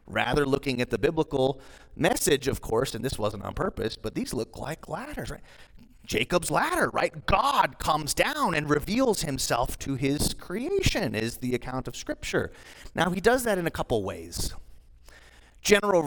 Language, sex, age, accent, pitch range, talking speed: English, male, 30-49, American, 110-175 Hz, 170 wpm